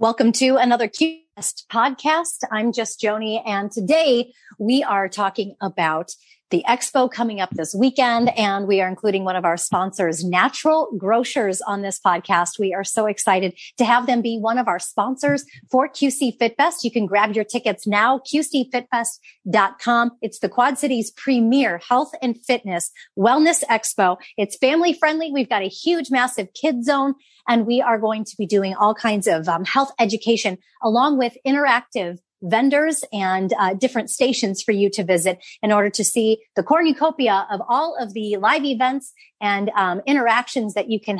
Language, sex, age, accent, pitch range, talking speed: English, female, 30-49, American, 200-260 Hz, 170 wpm